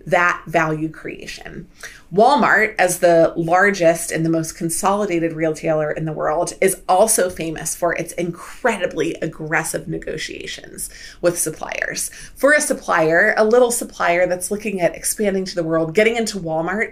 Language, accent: English, American